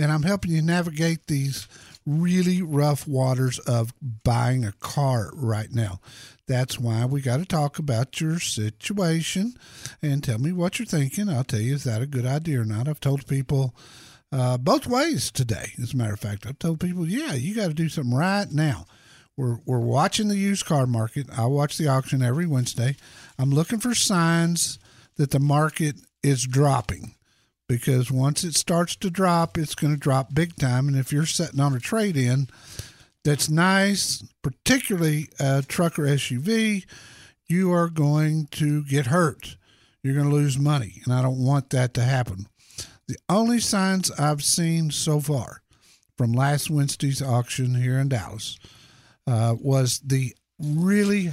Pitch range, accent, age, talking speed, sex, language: 125-160 Hz, American, 50-69, 170 wpm, male, English